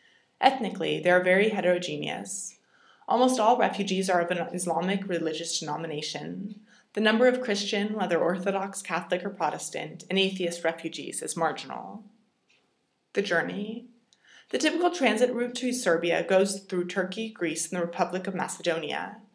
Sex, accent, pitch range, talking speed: female, American, 175-220 Hz, 140 wpm